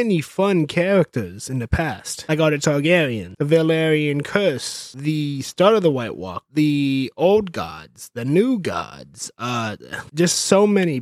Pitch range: 140-195 Hz